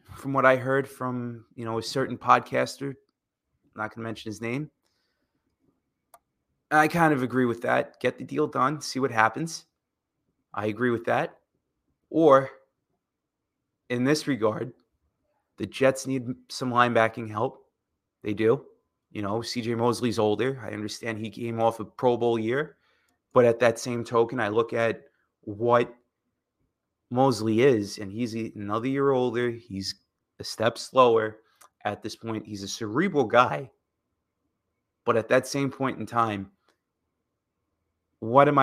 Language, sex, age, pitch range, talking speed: English, male, 20-39, 105-130 Hz, 150 wpm